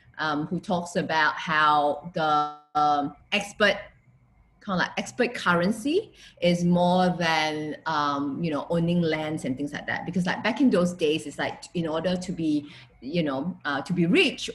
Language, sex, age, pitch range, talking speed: English, female, 20-39, 145-185 Hz, 175 wpm